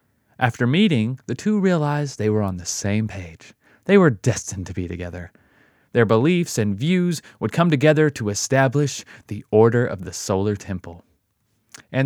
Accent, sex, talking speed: American, male, 165 wpm